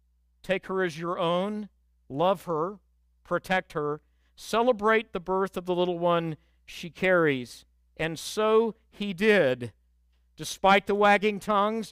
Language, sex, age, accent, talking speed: English, male, 50-69, American, 130 wpm